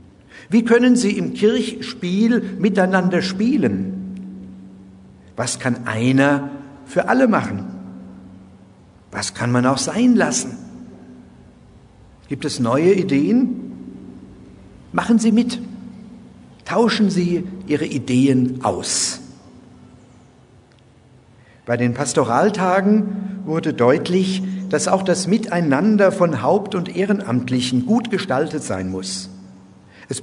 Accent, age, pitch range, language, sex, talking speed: German, 60-79, 120-195 Hz, German, male, 95 wpm